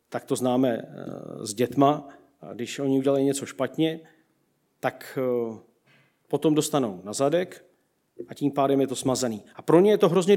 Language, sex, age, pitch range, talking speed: Czech, male, 40-59, 140-175 Hz, 155 wpm